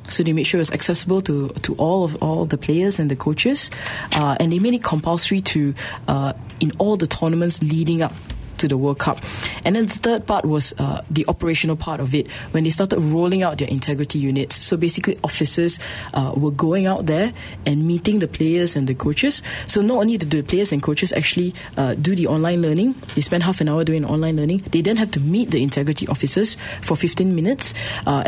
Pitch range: 140-180 Hz